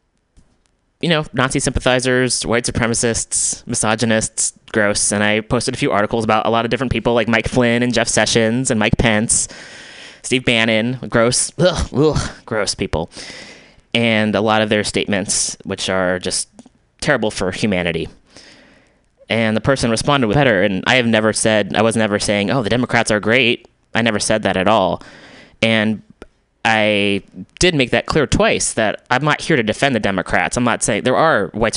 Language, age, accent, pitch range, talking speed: English, 20-39, American, 105-120 Hz, 180 wpm